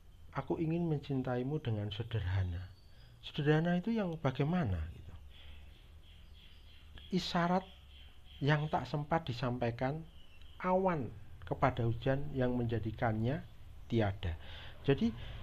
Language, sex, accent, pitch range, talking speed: Indonesian, male, native, 110-160 Hz, 85 wpm